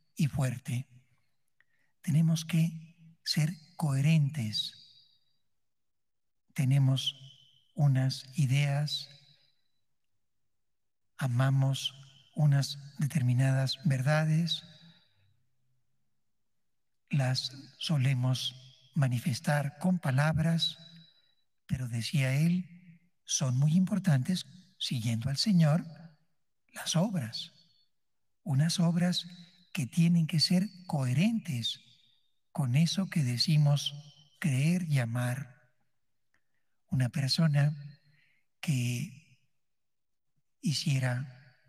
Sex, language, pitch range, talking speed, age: male, Spanish, 130-160 Hz, 70 wpm, 60-79